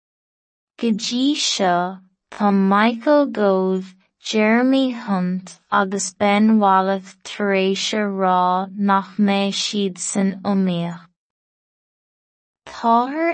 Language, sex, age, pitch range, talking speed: English, female, 20-39, 195-225 Hz, 65 wpm